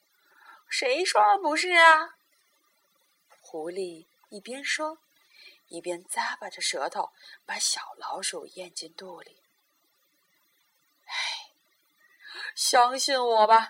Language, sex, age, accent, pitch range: Chinese, female, 30-49, native, 225-330 Hz